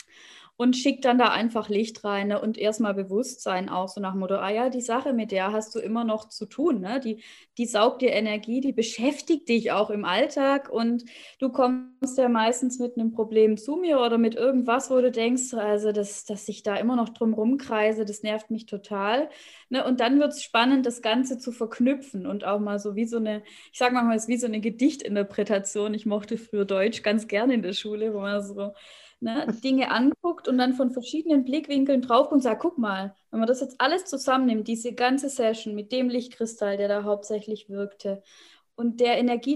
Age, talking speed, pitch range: 20-39, 210 wpm, 215-265 Hz